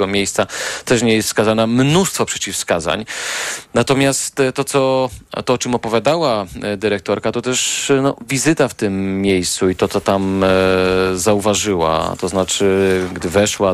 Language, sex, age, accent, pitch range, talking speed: Polish, male, 40-59, native, 95-120 Hz, 130 wpm